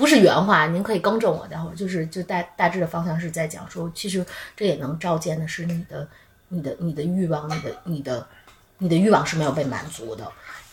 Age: 30-49